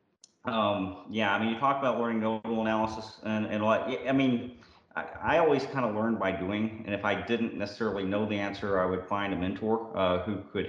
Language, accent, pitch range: English, American, 95-115 Hz